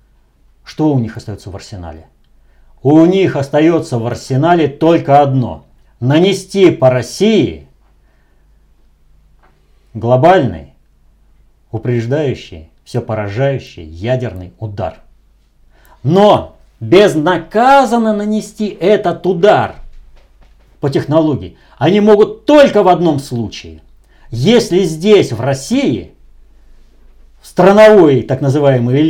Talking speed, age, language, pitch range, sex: 90 wpm, 50-69, Russian, 105-175 Hz, male